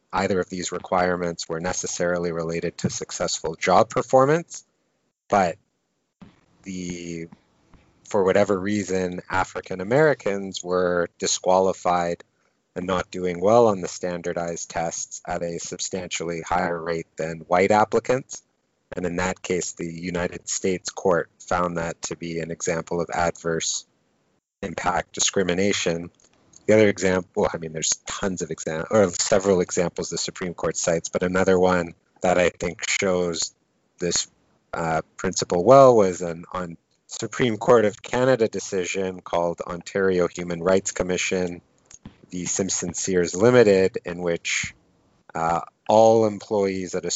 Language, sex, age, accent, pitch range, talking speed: English, male, 30-49, American, 85-95 Hz, 130 wpm